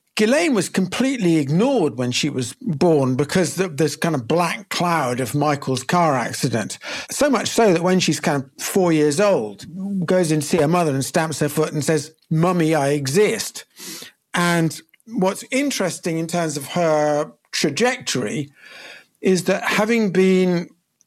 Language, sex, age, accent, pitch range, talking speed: English, male, 50-69, British, 155-200 Hz, 160 wpm